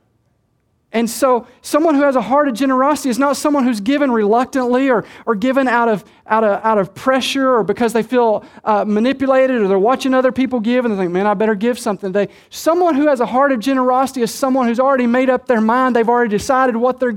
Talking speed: 235 wpm